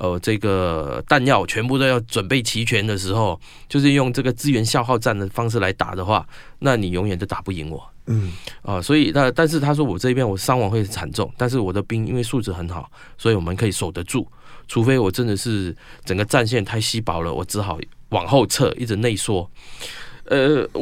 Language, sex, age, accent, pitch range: Chinese, male, 20-39, native, 95-130 Hz